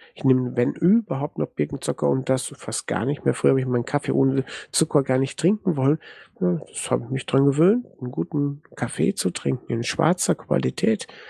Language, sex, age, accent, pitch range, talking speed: German, male, 50-69, German, 120-155 Hz, 195 wpm